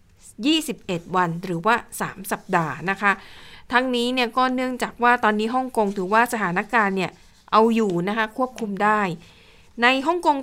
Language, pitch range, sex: Thai, 195-240 Hz, female